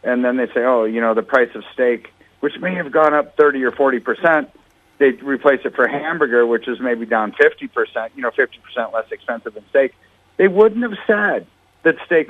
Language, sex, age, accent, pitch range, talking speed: English, male, 50-69, American, 125-165 Hz, 220 wpm